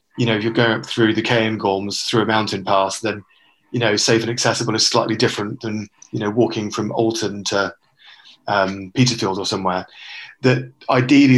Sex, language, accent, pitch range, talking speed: male, English, British, 105-125 Hz, 190 wpm